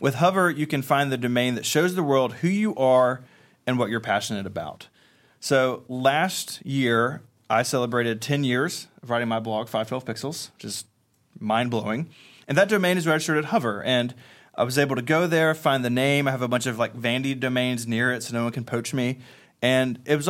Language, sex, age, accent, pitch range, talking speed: English, male, 30-49, American, 115-140 Hz, 205 wpm